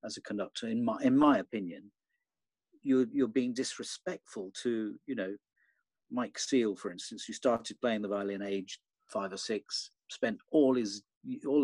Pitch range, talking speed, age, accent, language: 110-185 Hz, 165 wpm, 50-69, British, English